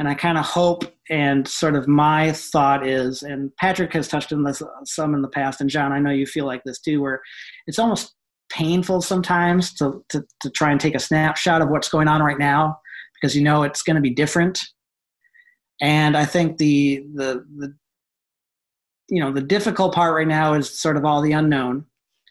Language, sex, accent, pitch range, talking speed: English, male, American, 140-170 Hz, 205 wpm